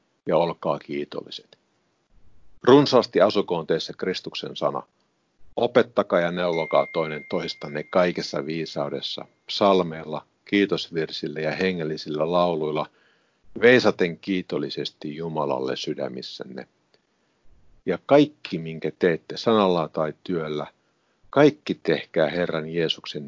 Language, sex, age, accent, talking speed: Finnish, male, 50-69, native, 90 wpm